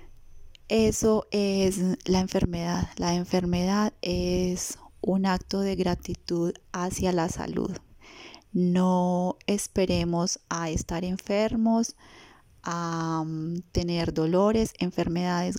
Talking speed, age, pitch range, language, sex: 90 wpm, 30-49, 175-215 Hz, Spanish, female